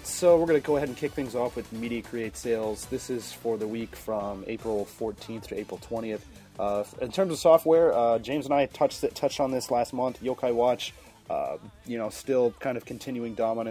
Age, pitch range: 30-49, 105-125 Hz